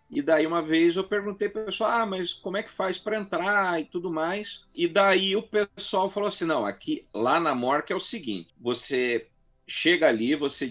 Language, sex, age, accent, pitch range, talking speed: Portuguese, male, 50-69, Brazilian, 155-225 Hz, 215 wpm